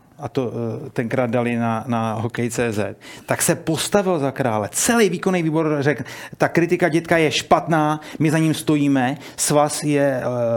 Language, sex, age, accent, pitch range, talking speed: Czech, male, 30-49, native, 120-150 Hz, 160 wpm